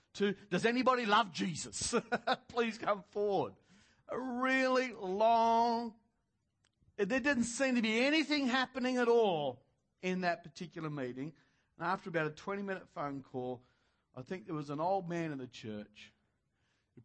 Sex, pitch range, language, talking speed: male, 120-190 Hz, English, 145 wpm